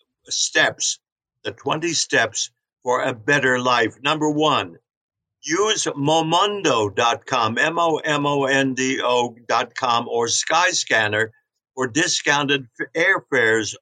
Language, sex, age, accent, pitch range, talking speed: English, male, 60-79, American, 125-155 Hz, 105 wpm